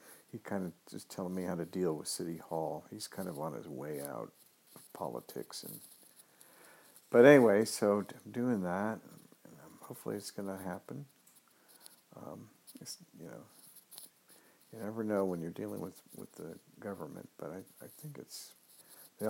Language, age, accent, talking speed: English, 60-79, American, 170 wpm